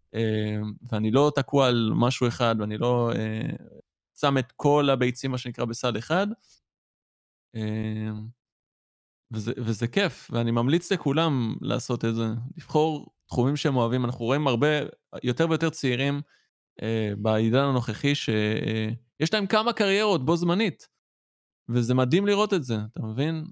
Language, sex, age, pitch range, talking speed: Hebrew, male, 20-39, 115-155 Hz, 140 wpm